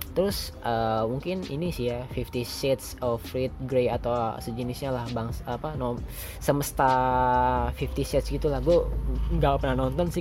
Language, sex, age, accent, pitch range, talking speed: Indonesian, female, 20-39, native, 125-155 Hz, 160 wpm